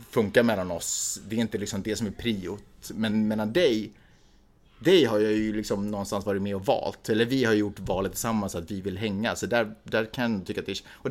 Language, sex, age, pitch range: Swedish, male, 30-49, 105-125 Hz